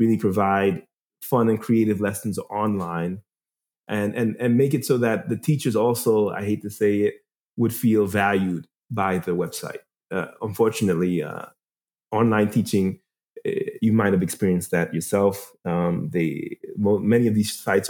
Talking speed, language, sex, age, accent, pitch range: 160 wpm, English, male, 30-49, American, 100-130 Hz